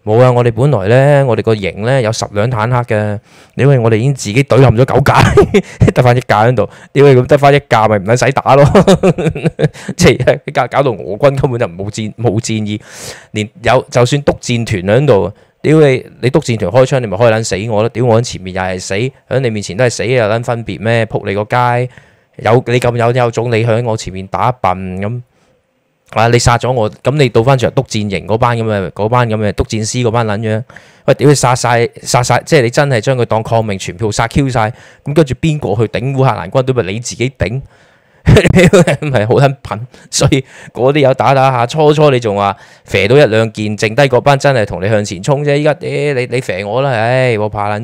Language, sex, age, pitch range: Chinese, male, 20-39, 105-135 Hz